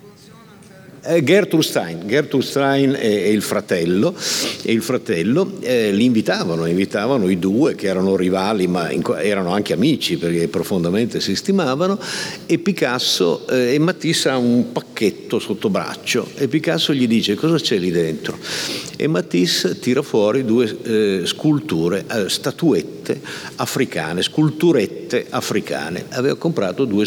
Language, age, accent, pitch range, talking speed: Italian, 50-69, native, 100-160 Hz, 135 wpm